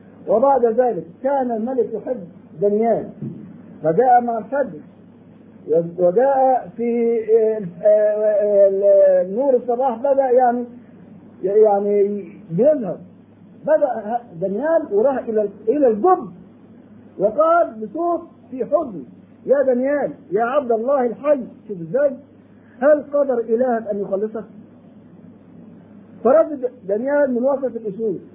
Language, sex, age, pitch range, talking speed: Arabic, male, 50-69, 215-285 Hz, 90 wpm